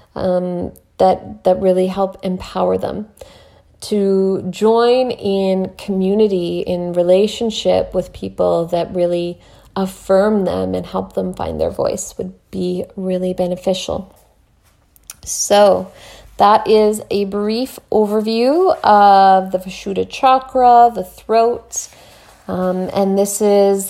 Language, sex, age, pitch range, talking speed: English, female, 30-49, 180-205 Hz, 115 wpm